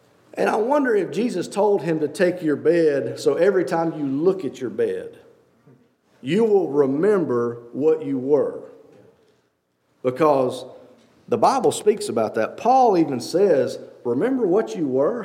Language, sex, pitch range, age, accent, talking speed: English, male, 150-250 Hz, 50-69, American, 150 wpm